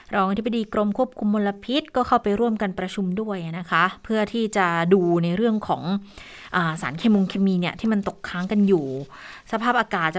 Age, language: 20-39, Thai